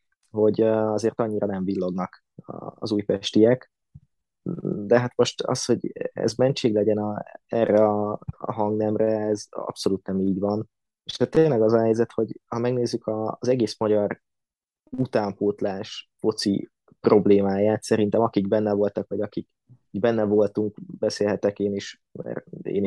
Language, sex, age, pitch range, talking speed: Hungarian, male, 20-39, 105-120 Hz, 135 wpm